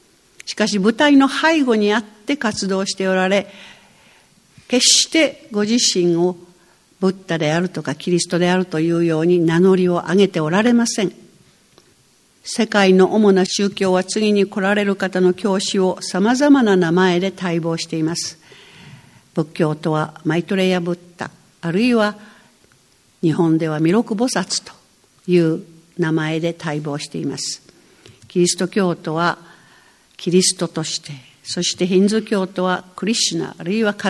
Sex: female